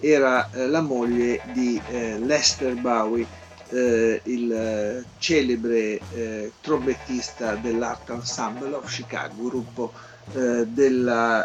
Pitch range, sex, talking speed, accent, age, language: 120-150 Hz, male, 80 wpm, native, 50-69, Italian